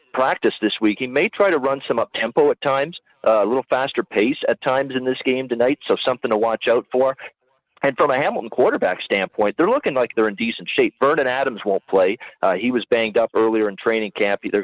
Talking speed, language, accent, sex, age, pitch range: 235 wpm, English, American, male, 40-59, 110-130 Hz